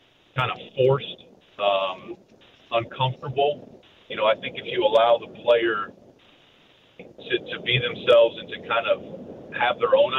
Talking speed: 145 wpm